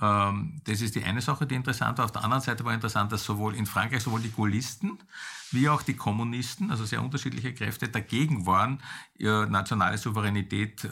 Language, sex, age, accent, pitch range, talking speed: German, male, 50-69, Austrian, 100-125 Hz, 185 wpm